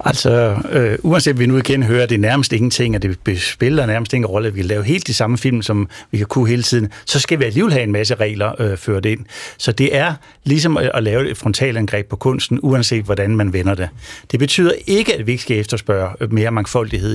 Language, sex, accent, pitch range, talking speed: Danish, male, native, 105-130 Hz, 240 wpm